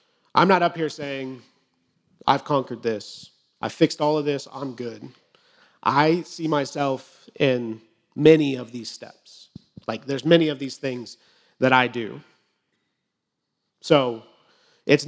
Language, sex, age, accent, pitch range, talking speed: English, male, 30-49, American, 130-155 Hz, 135 wpm